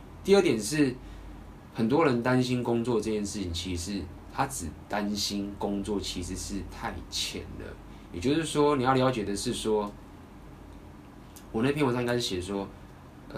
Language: Chinese